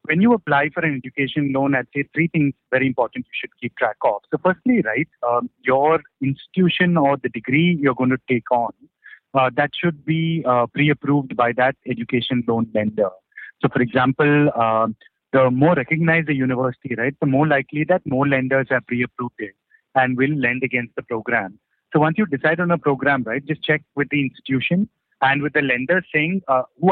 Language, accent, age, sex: English, Indian, 30-49, male